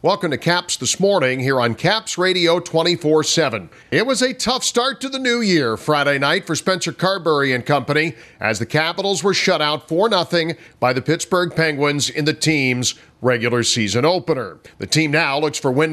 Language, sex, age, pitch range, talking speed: English, male, 50-69, 110-170 Hz, 190 wpm